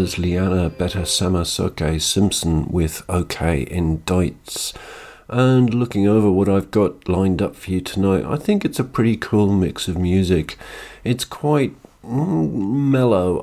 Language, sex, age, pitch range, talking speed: English, male, 50-69, 90-115 Hz, 140 wpm